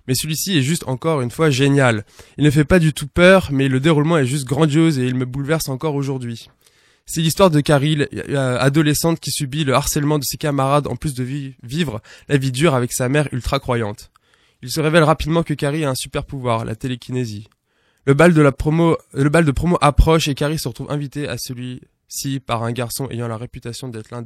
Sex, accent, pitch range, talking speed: male, French, 125-150 Hz, 205 wpm